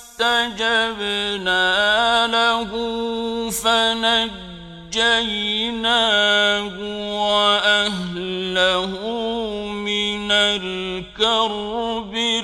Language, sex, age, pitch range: Arabic, male, 50-69, 185-230 Hz